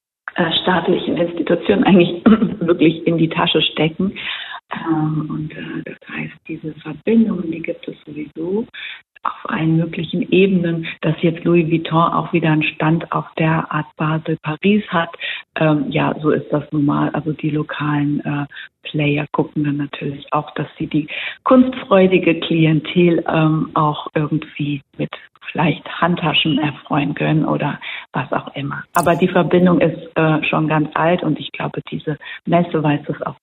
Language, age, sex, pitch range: German, 50-69, female, 150-170 Hz